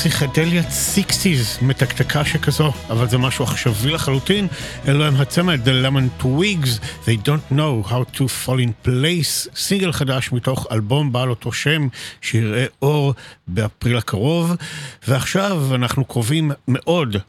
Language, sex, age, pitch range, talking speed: Hebrew, male, 50-69, 120-155 Hz, 130 wpm